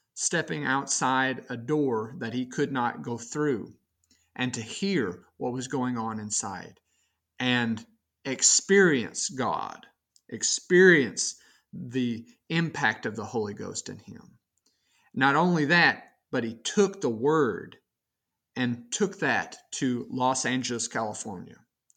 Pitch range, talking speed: 115-145 Hz, 125 wpm